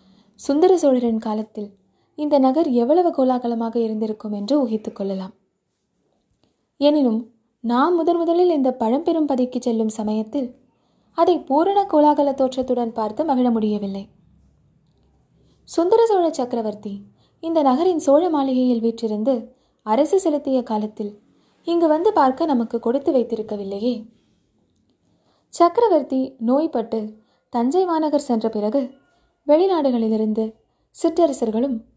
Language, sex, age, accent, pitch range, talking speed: Tamil, female, 20-39, native, 225-295 Hz, 90 wpm